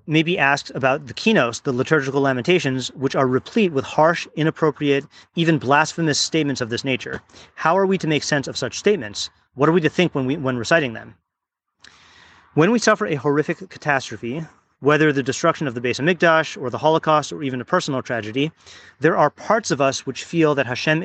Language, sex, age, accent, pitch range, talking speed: English, male, 30-49, American, 130-160 Hz, 200 wpm